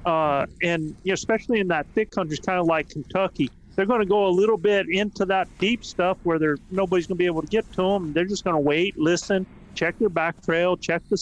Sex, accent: male, American